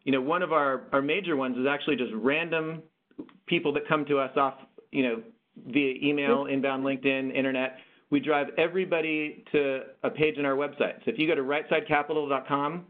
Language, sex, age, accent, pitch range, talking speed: English, male, 40-59, American, 130-155 Hz, 185 wpm